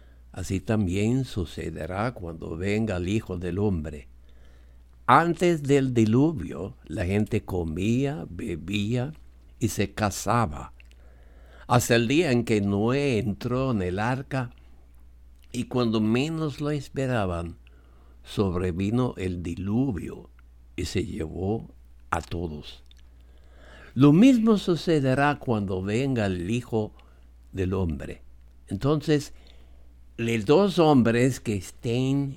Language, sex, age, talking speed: English, male, 60-79, 105 wpm